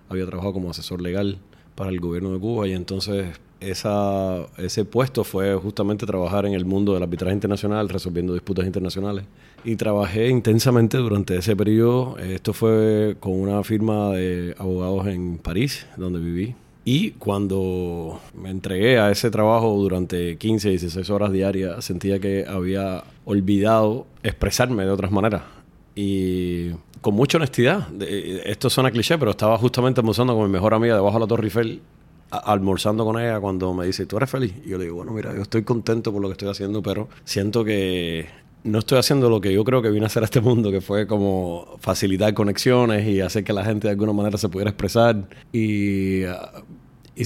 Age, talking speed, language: 30-49, 180 wpm, Spanish